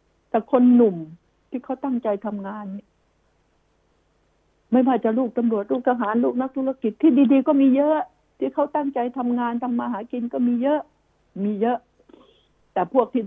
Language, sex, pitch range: Thai, female, 205-255 Hz